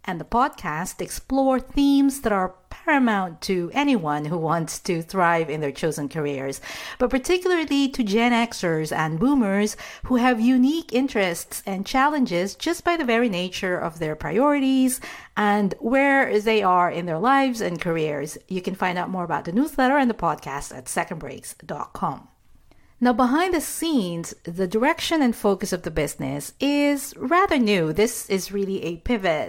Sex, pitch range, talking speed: female, 165-255 Hz, 165 wpm